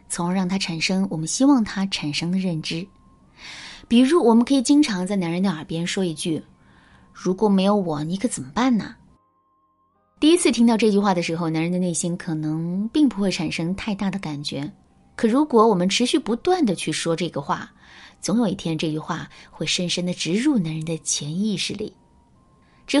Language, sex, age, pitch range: Chinese, female, 20-39, 170-245 Hz